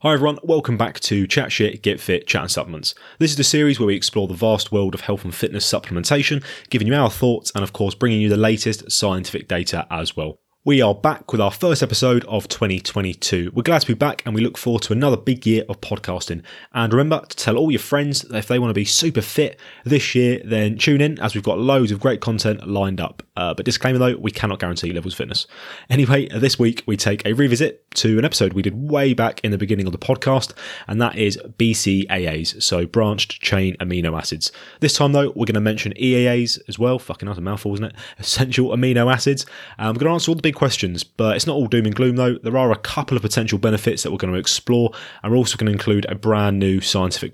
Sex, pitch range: male, 100-130 Hz